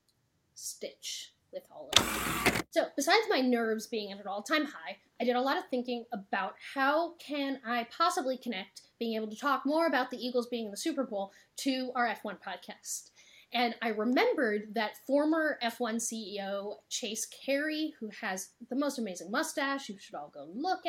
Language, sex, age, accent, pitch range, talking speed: English, female, 10-29, American, 220-300 Hz, 180 wpm